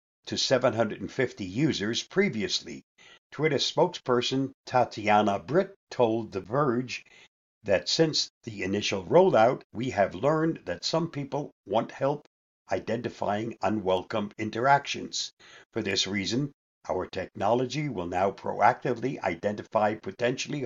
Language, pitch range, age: English, 105-165 Hz, 60-79